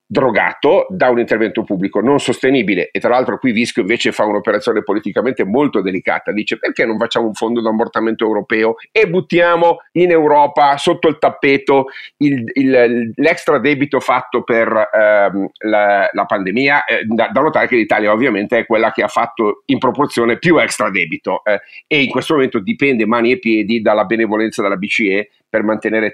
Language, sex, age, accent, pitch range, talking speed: Italian, male, 50-69, native, 110-135 Hz, 175 wpm